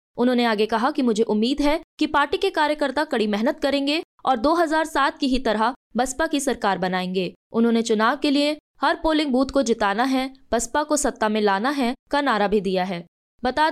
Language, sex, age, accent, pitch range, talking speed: Hindi, female, 20-39, native, 220-280 Hz, 195 wpm